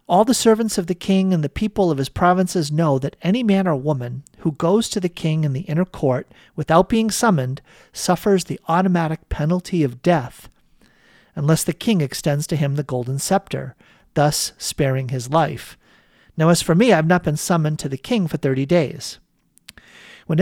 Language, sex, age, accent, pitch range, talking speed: English, male, 50-69, American, 140-185 Hz, 190 wpm